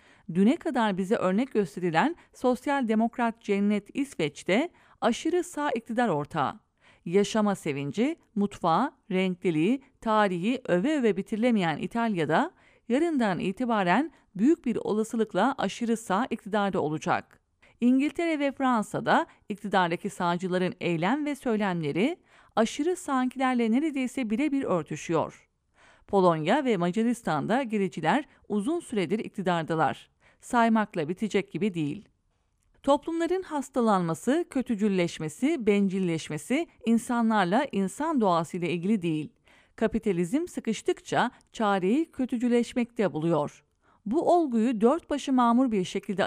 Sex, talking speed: female, 100 wpm